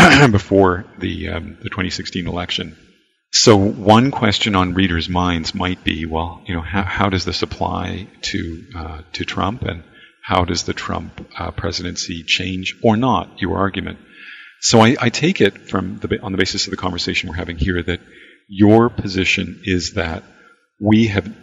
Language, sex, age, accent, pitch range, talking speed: English, male, 40-59, American, 90-100 Hz, 170 wpm